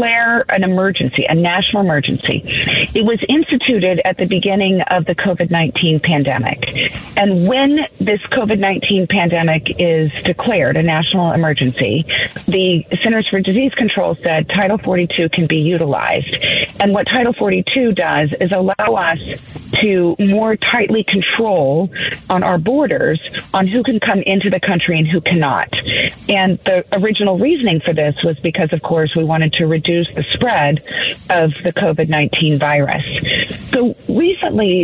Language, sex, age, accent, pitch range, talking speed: English, female, 40-59, American, 165-205 Hz, 145 wpm